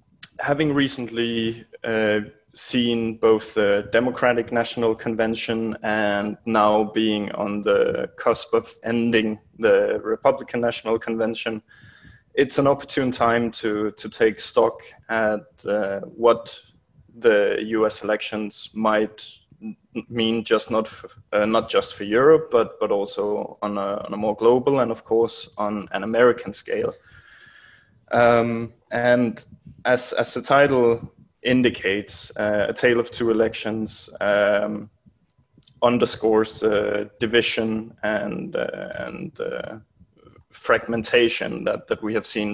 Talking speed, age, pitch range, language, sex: 120 wpm, 20-39, 105-120 Hz, Czech, male